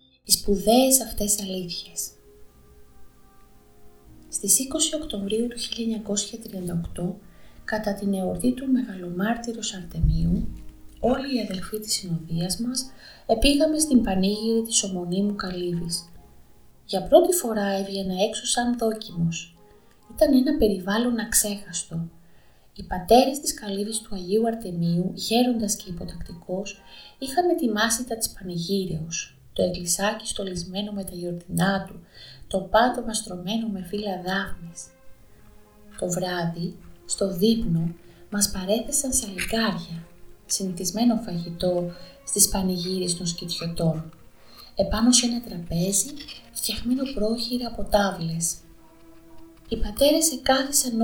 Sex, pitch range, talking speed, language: female, 175-225 Hz, 105 wpm, Greek